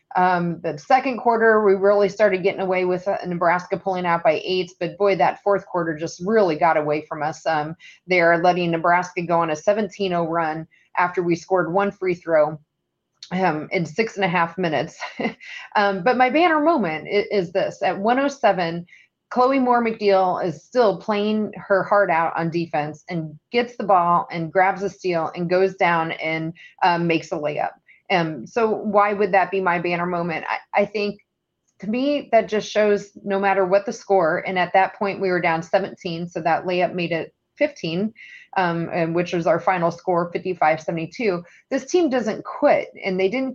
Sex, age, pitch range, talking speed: female, 30-49, 170-205 Hz, 185 wpm